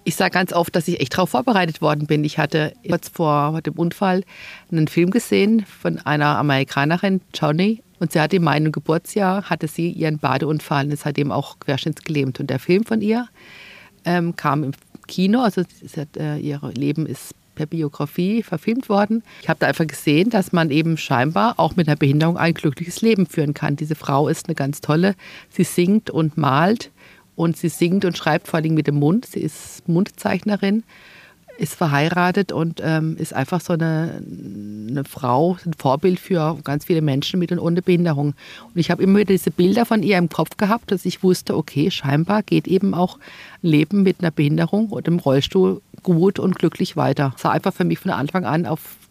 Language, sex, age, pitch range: German, female, 50-69, 150-185 Hz